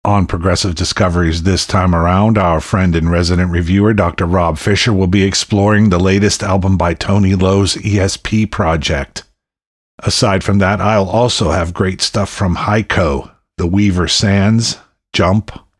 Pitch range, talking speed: 90-105 Hz, 150 wpm